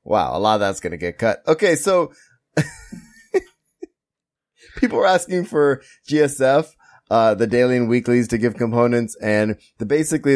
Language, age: English, 20-39